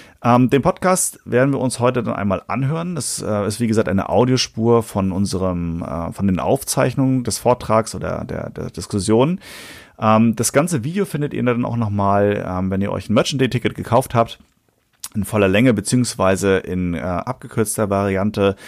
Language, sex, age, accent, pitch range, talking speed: German, male, 30-49, German, 105-150 Hz, 175 wpm